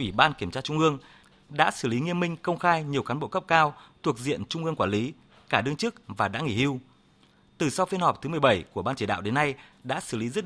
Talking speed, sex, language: 270 wpm, male, Vietnamese